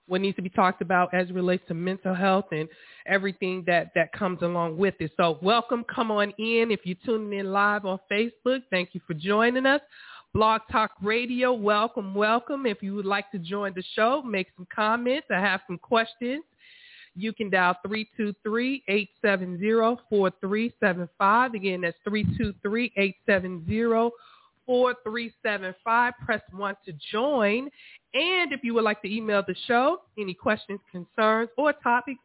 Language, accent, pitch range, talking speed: English, American, 190-235 Hz, 165 wpm